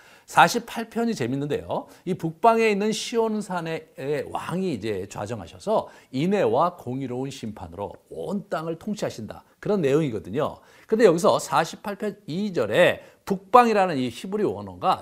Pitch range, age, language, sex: 140-225 Hz, 50-69, Korean, male